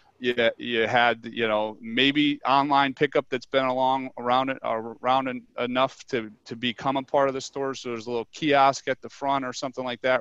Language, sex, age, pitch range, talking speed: English, male, 30-49, 115-130 Hz, 205 wpm